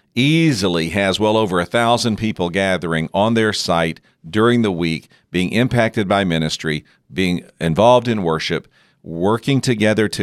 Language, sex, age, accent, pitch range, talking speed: English, male, 50-69, American, 80-110 Hz, 145 wpm